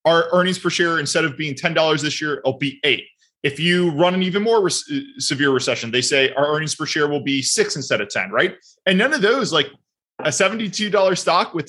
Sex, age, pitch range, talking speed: male, 20-39, 140-185 Hz, 220 wpm